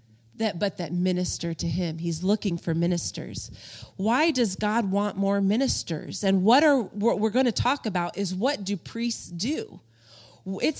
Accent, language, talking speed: American, English, 170 wpm